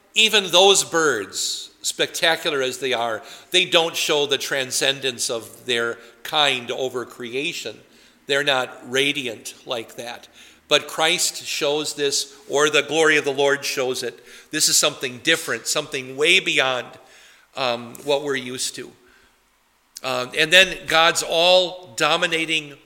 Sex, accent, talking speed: male, American, 135 wpm